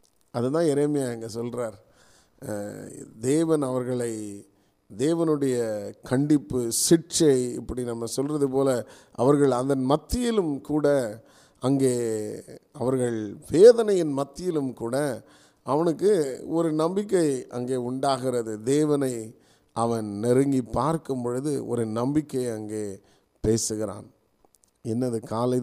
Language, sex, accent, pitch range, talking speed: Tamil, male, native, 115-145 Hz, 90 wpm